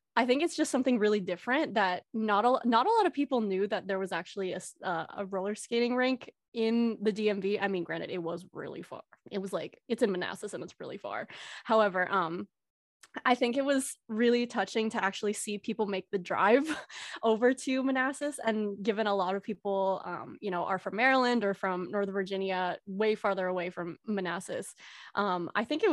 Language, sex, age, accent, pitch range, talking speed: English, female, 20-39, American, 195-245 Hz, 200 wpm